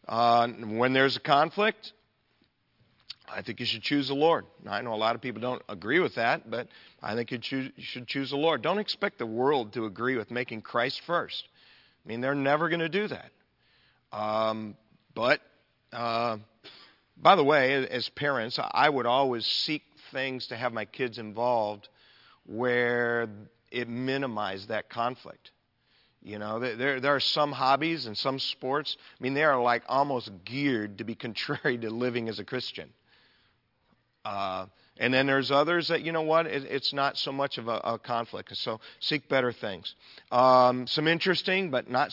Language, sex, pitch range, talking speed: English, male, 115-145 Hz, 180 wpm